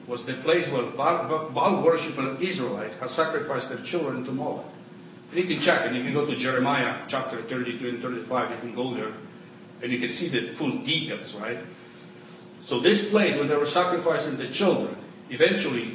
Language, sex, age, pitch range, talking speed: English, male, 50-69, 125-160 Hz, 185 wpm